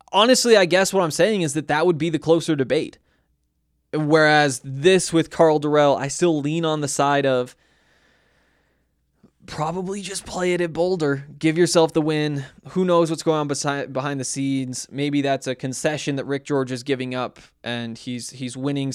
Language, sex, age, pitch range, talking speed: English, male, 20-39, 125-165 Hz, 185 wpm